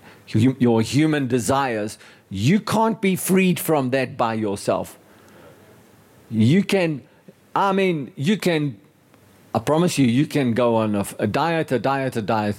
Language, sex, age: English, male, 50-69